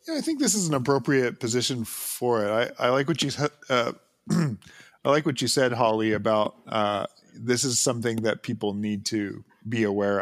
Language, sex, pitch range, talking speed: English, male, 105-125 Hz, 165 wpm